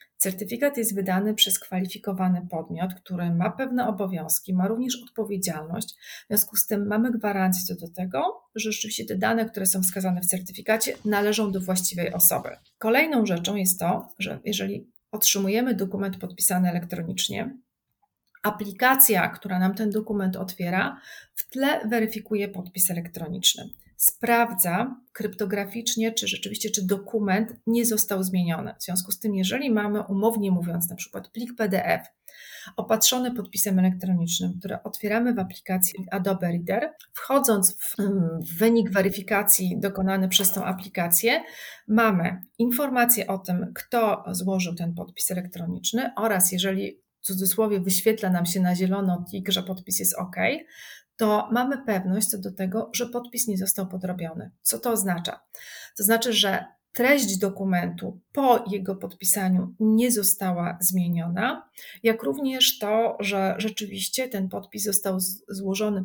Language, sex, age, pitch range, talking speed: Polish, female, 40-59, 185-220 Hz, 135 wpm